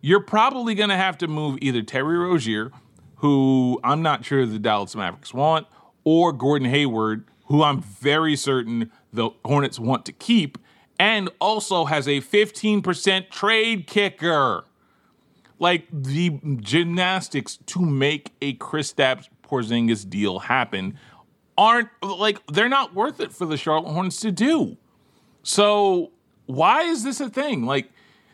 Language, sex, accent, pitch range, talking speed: English, male, American, 130-195 Hz, 140 wpm